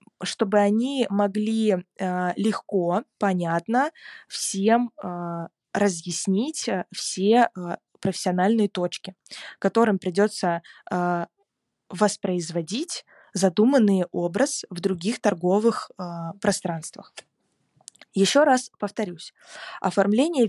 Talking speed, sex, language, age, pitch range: 65 wpm, female, Russian, 20-39, 185-225 Hz